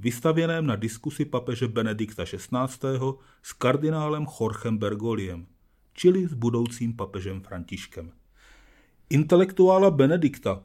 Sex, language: male, Czech